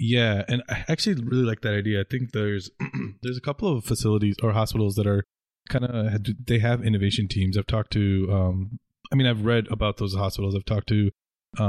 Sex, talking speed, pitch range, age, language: male, 210 wpm, 100-115 Hz, 20-39, English